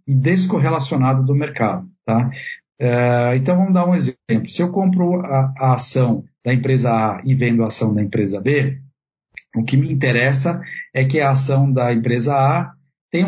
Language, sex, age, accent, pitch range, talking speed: Portuguese, male, 50-69, Brazilian, 125-170 Hz, 165 wpm